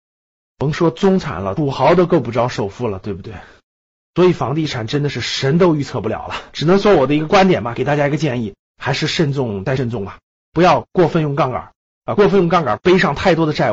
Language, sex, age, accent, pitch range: Chinese, male, 30-49, native, 135-205 Hz